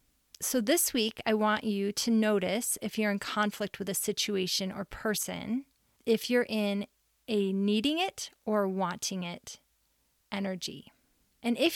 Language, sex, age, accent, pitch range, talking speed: English, female, 30-49, American, 190-225 Hz, 150 wpm